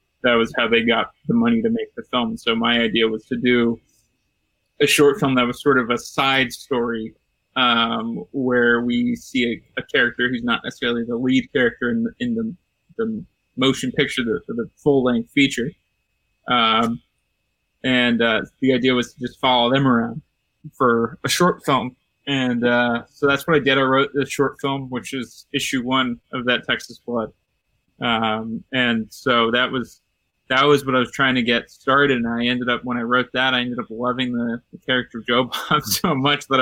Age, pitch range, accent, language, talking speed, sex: 20-39, 120-140 Hz, American, English, 200 wpm, male